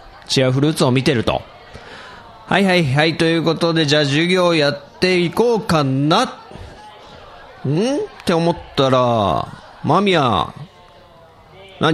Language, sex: Japanese, male